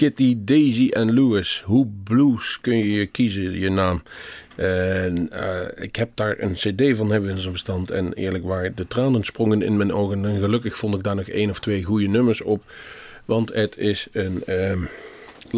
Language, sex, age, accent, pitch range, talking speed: Dutch, male, 40-59, Dutch, 95-115 Hz, 190 wpm